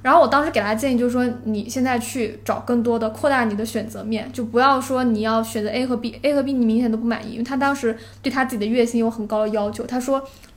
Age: 20-39